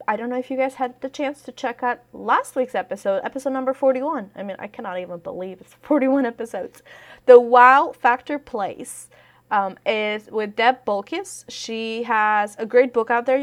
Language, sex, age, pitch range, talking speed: English, female, 20-39, 205-260 Hz, 190 wpm